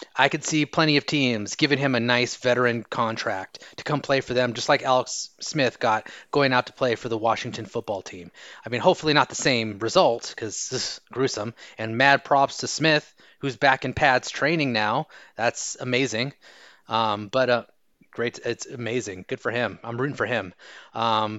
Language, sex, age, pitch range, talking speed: English, male, 30-49, 120-155 Hz, 190 wpm